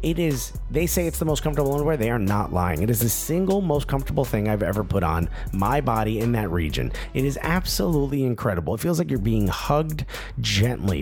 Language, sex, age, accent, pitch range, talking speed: English, male, 30-49, American, 105-145 Hz, 220 wpm